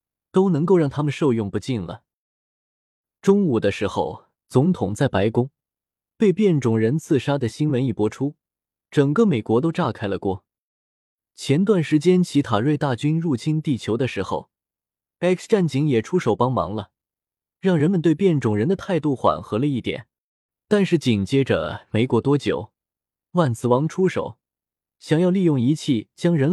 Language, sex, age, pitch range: Chinese, male, 20-39, 110-170 Hz